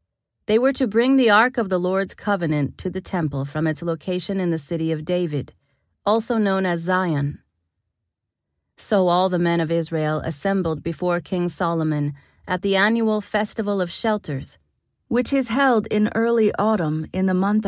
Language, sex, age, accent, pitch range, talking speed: English, female, 30-49, American, 160-215 Hz, 170 wpm